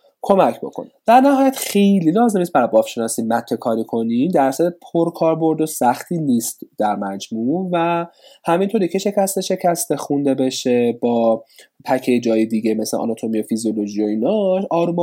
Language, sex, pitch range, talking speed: Persian, male, 120-170 Hz, 150 wpm